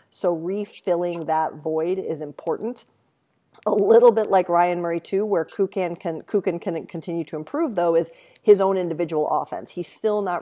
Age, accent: 40-59, American